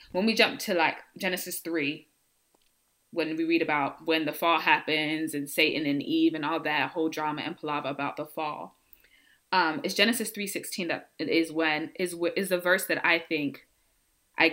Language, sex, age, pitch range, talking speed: English, female, 20-39, 155-180 Hz, 185 wpm